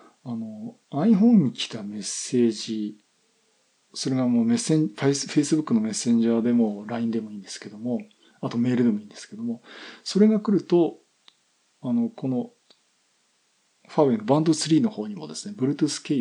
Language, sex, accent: Japanese, male, native